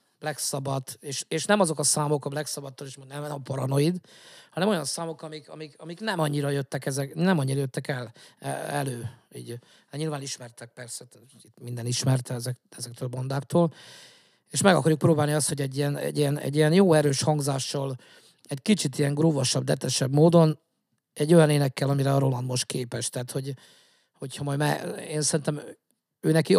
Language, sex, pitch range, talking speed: Hungarian, male, 135-155 Hz, 180 wpm